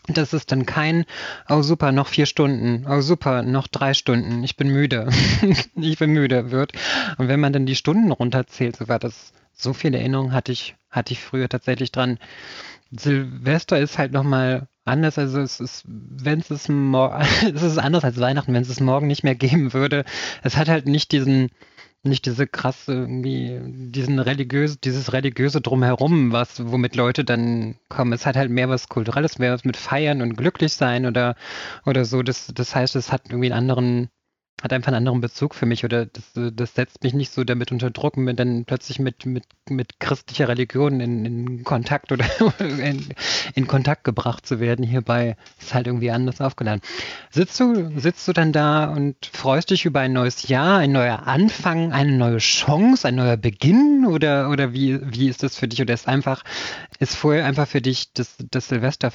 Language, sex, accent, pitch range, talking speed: German, male, German, 125-145 Hz, 195 wpm